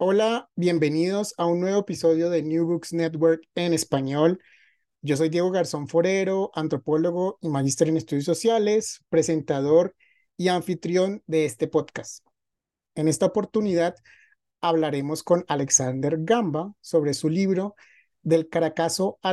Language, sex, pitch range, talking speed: Spanish, male, 155-185 Hz, 130 wpm